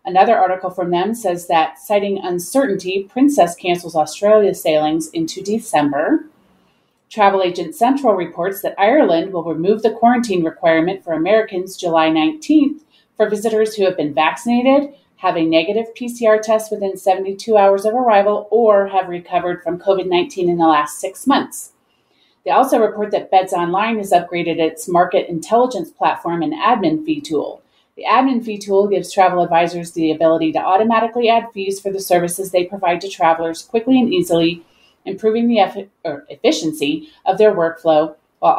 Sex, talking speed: female, 155 wpm